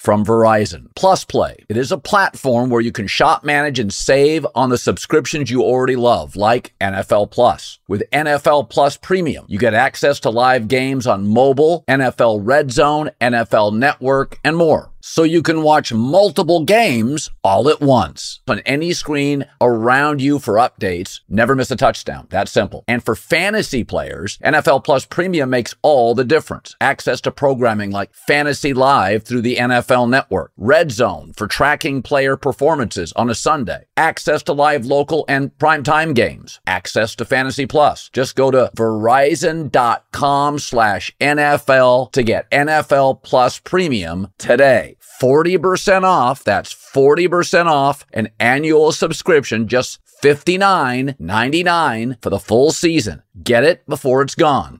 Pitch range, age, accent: 120-155 Hz, 50-69, American